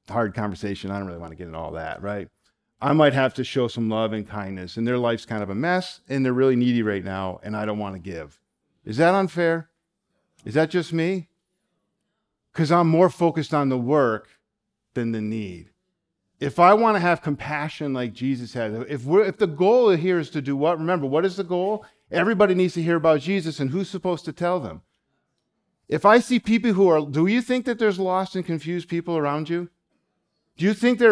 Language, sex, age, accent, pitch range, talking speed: English, male, 40-59, American, 130-185 Hz, 220 wpm